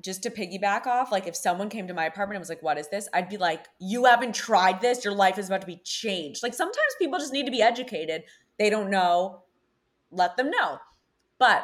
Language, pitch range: English, 165-205 Hz